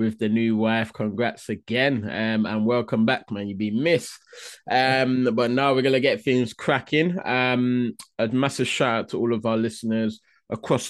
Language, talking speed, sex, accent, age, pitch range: English, 185 wpm, male, British, 20-39, 110-130 Hz